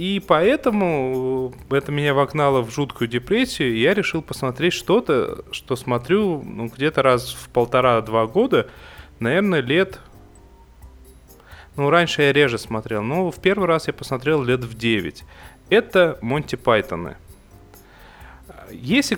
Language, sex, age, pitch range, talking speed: Russian, male, 30-49, 120-165 Hz, 130 wpm